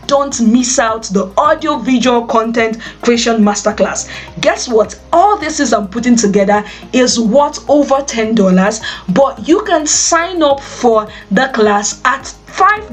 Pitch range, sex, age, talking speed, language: 210-275 Hz, female, 20-39, 150 wpm, English